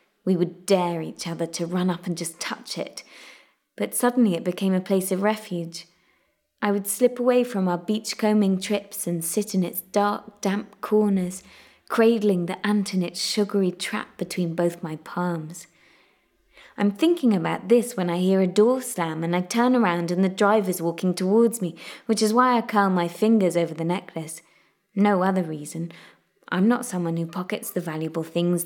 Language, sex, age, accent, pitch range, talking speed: English, female, 20-39, British, 175-225 Hz, 180 wpm